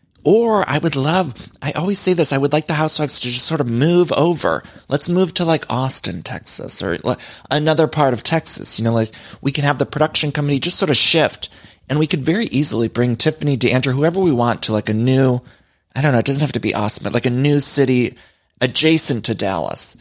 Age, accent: 30-49, American